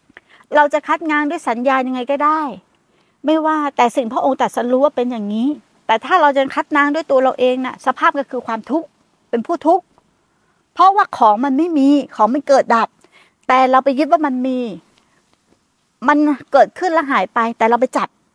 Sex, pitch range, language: female, 240-300 Hz, Thai